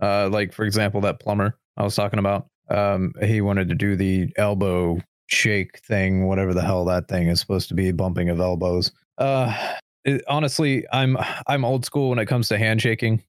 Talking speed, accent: 195 wpm, American